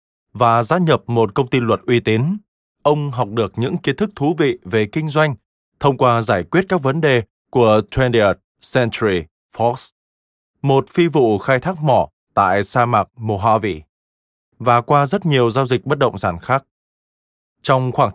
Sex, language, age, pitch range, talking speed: male, Vietnamese, 20-39, 115-150 Hz, 175 wpm